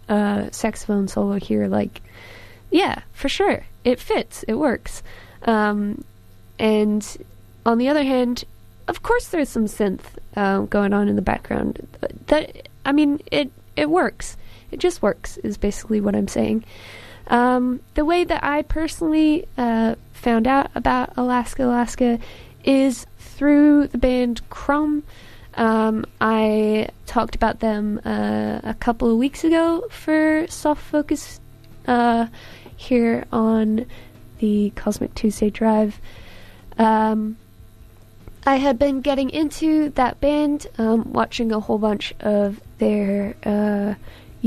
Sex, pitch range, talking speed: female, 205-275 Hz, 130 wpm